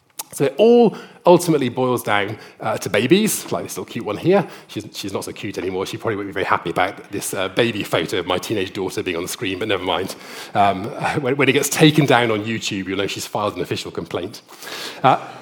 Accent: British